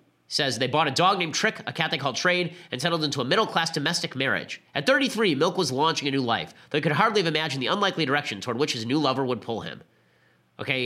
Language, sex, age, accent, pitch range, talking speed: English, male, 30-49, American, 125-160 Hz, 245 wpm